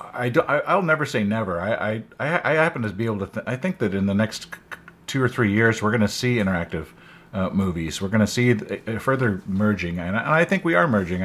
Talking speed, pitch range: 265 wpm, 100-135 Hz